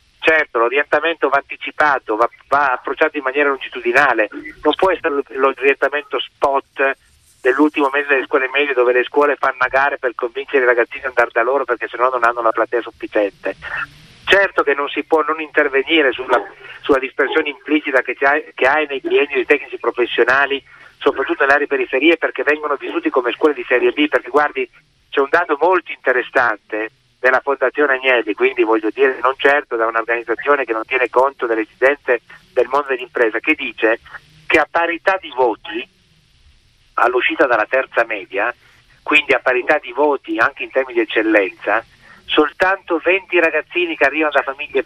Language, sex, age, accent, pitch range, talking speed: Italian, male, 30-49, native, 130-175 Hz, 165 wpm